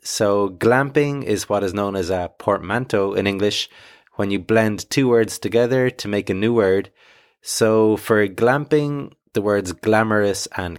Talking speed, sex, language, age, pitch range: 160 wpm, male, English, 30-49, 100-125 Hz